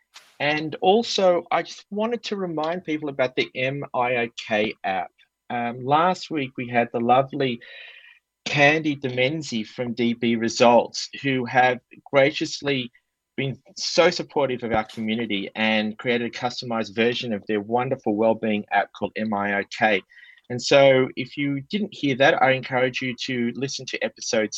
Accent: Australian